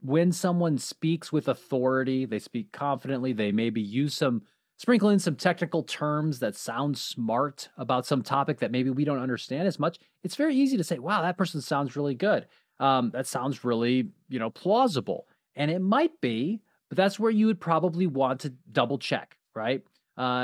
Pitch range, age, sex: 125-175 Hz, 30-49, male